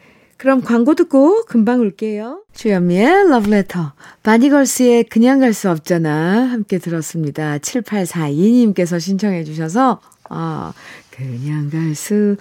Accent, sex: native, female